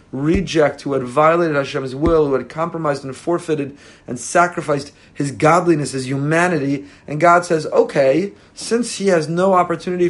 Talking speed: 155 wpm